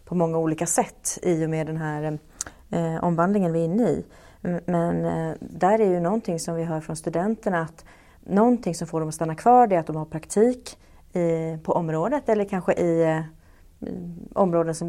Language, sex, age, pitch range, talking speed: Swedish, female, 30-49, 165-200 Hz, 195 wpm